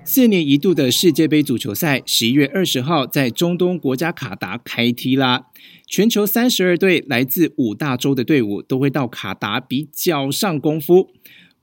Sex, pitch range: male, 130-190 Hz